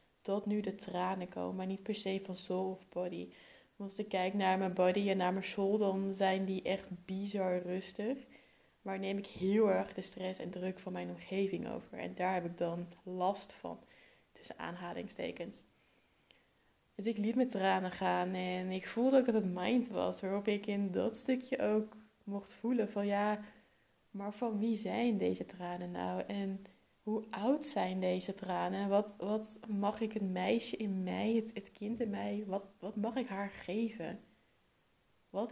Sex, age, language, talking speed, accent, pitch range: female, 20-39, Dutch, 185 wpm, Dutch, 185-220 Hz